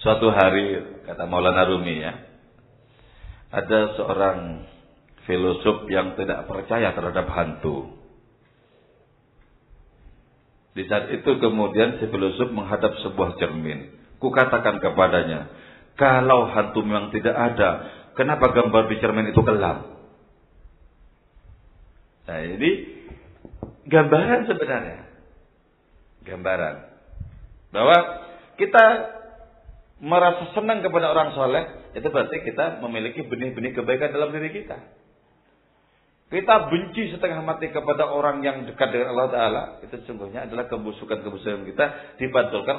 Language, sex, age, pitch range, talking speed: English, male, 50-69, 95-145 Hz, 105 wpm